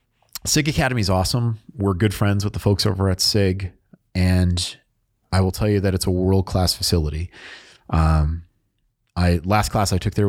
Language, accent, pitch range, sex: English, American, 90-110 Hz, male